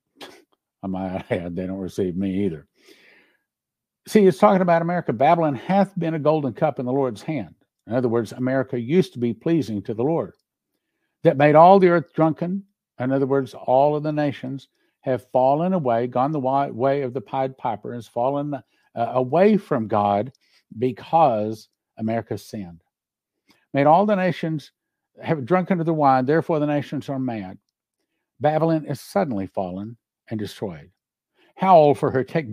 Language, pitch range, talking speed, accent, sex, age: English, 120-155 Hz, 165 wpm, American, male, 60-79